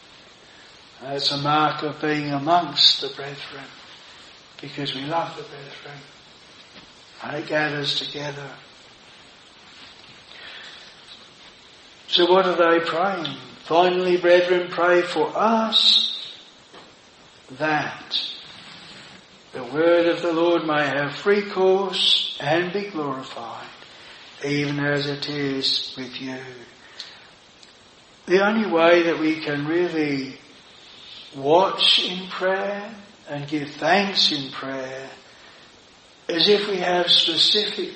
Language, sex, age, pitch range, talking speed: English, male, 60-79, 145-180 Hz, 105 wpm